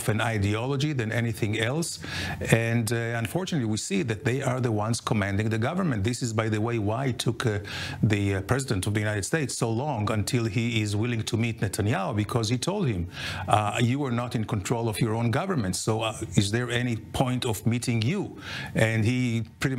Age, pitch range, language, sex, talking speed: 50-69, 110-130 Hz, English, male, 210 wpm